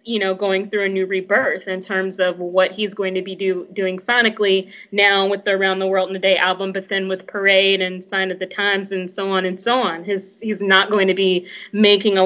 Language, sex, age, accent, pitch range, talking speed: English, female, 20-39, American, 190-210 Hz, 250 wpm